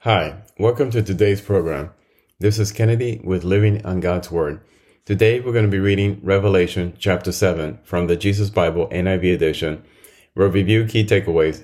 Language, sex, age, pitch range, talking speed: English, male, 30-49, 90-105 Hz, 165 wpm